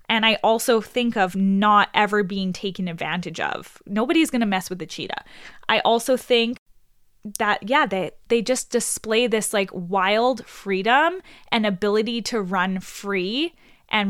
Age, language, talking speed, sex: 10-29, English, 160 wpm, female